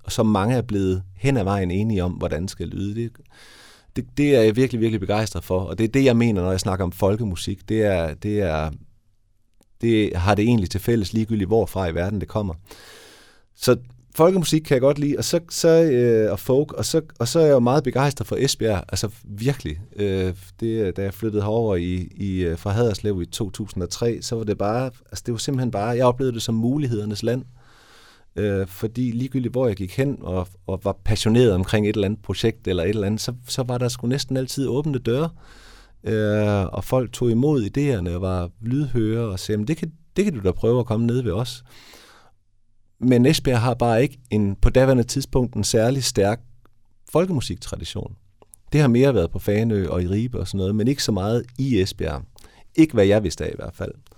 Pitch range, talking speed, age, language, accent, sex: 100-125 Hz, 210 wpm, 30-49, Danish, native, male